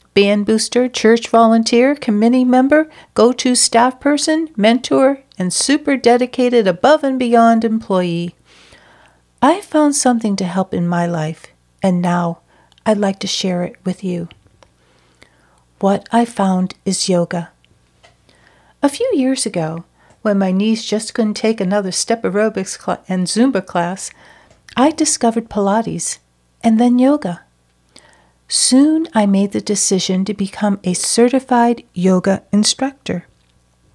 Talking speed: 125 wpm